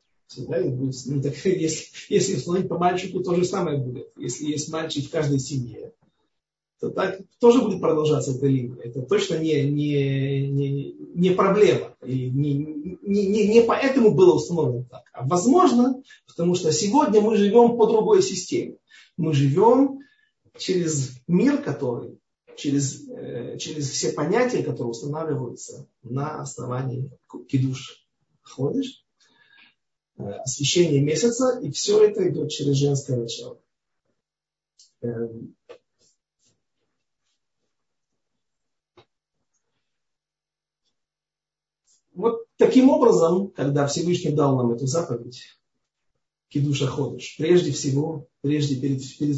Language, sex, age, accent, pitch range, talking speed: Russian, male, 40-59, native, 135-190 Hz, 115 wpm